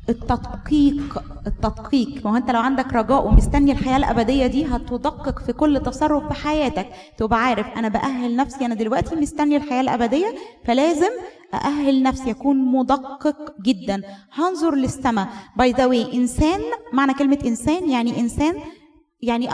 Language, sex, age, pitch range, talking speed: Arabic, female, 20-39, 235-295 Hz, 125 wpm